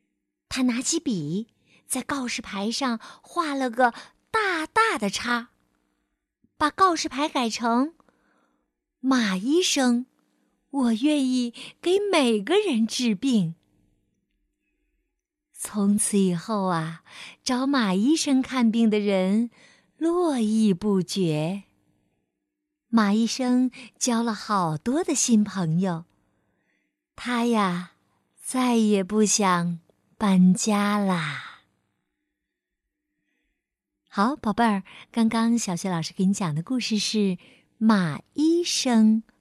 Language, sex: Chinese, female